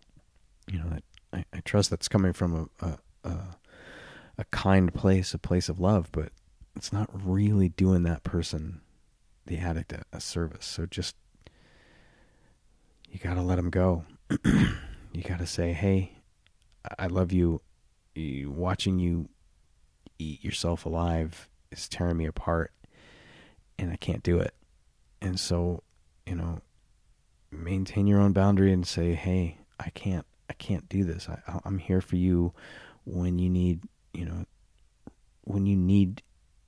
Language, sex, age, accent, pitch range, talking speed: English, male, 30-49, American, 80-95 Hz, 140 wpm